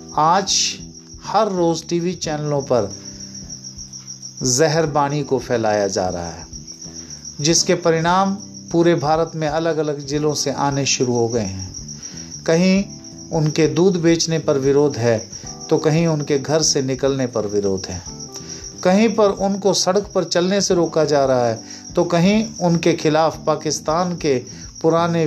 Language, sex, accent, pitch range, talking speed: Hindi, male, native, 105-170 Hz, 140 wpm